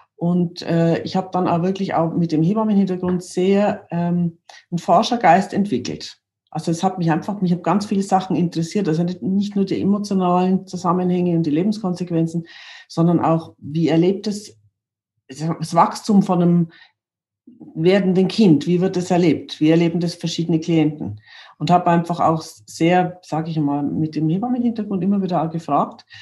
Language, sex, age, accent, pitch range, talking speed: German, female, 50-69, German, 170-200 Hz, 165 wpm